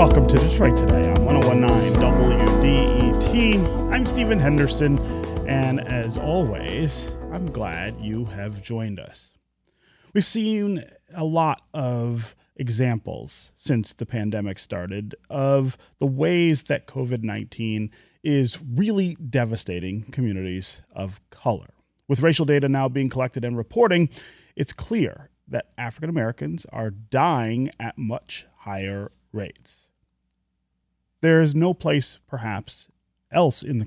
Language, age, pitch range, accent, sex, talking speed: English, 30-49, 105-140 Hz, American, male, 120 wpm